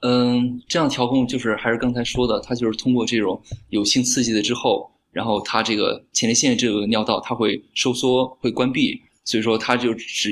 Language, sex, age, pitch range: Chinese, male, 20-39, 115-135 Hz